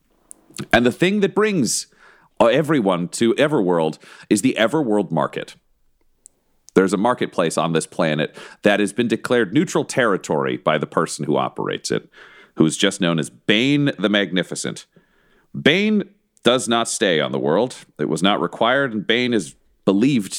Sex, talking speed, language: male, 155 wpm, English